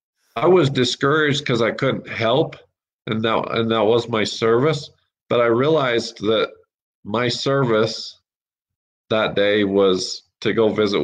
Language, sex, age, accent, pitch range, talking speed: English, male, 40-59, American, 100-125 Hz, 140 wpm